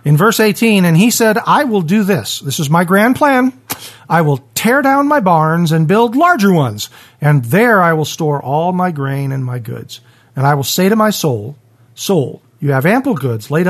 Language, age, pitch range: English, 40-59, 140-200 Hz